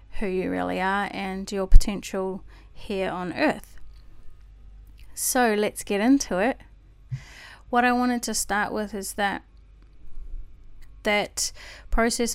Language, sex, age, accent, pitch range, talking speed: English, female, 30-49, Australian, 185-220 Hz, 120 wpm